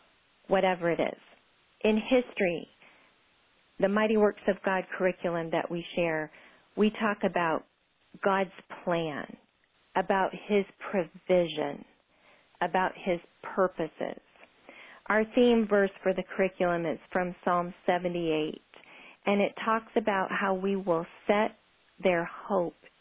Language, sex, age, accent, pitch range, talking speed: English, female, 40-59, American, 180-230 Hz, 115 wpm